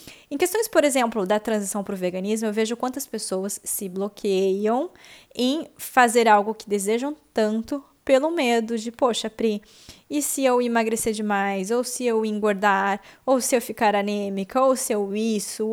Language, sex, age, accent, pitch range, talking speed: English, female, 20-39, Brazilian, 195-250 Hz, 170 wpm